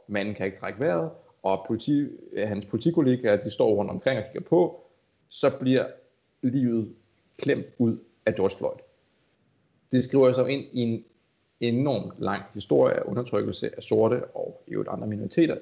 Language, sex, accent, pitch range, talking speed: Danish, male, native, 100-125 Hz, 160 wpm